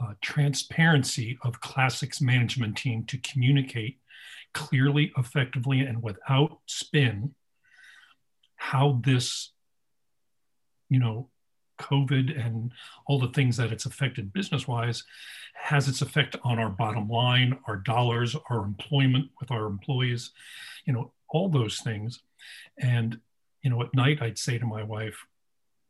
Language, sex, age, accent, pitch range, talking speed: English, male, 50-69, American, 120-140 Hz, 125 wpm